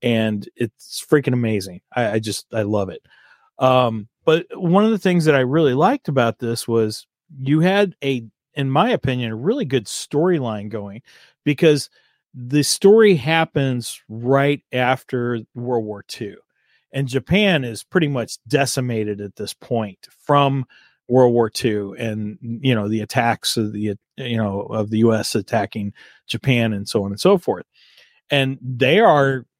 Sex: male